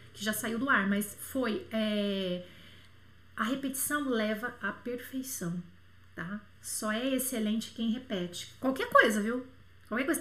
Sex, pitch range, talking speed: female, 205-310 Hz, 140 wpm